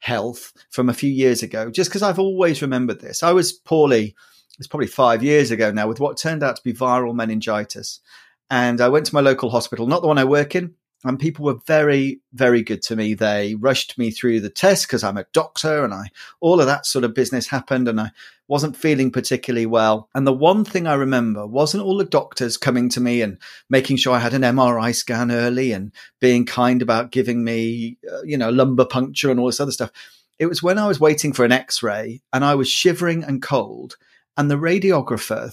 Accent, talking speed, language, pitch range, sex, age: British, 220 wpm, English, 120-165 Hz, male, 40-59